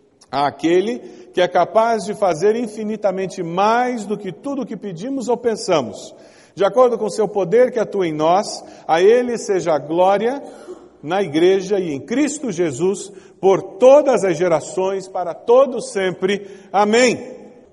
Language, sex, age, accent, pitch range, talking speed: English, male, 50-69, Brazilian, 190-240 Hz, 150 wpm